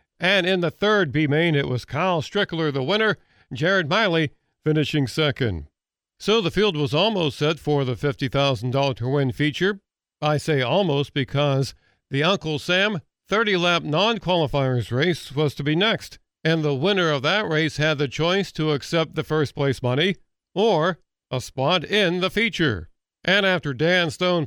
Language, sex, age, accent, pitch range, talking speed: English, male, 50-69, American, 145-185 Hz, 160 wpm